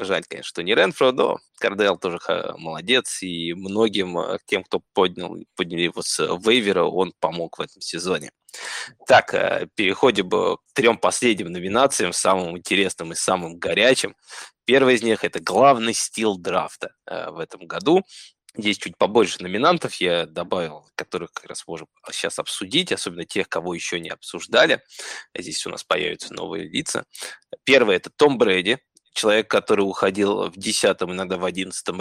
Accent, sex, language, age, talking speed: native, male, Russian, 20-39, 155 wpm